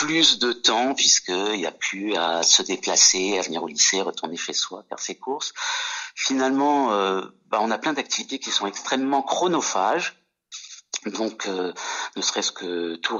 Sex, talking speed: male, 170 wpm